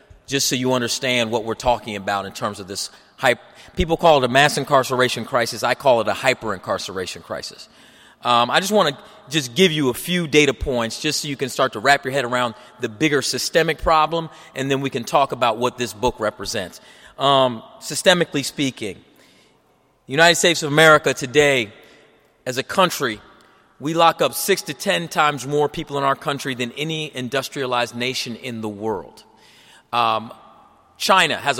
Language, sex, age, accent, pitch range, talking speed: English, male, 30-49, American, 120-150 Hz, 180 wpm